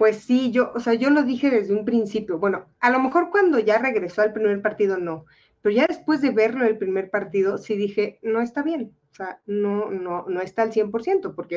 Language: English